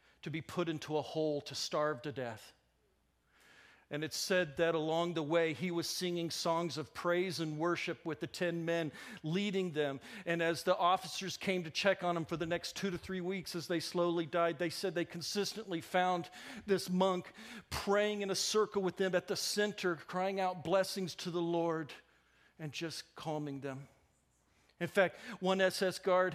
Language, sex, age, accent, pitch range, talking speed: English, male, 50-69, American, 155-195 Hz, 185 wpm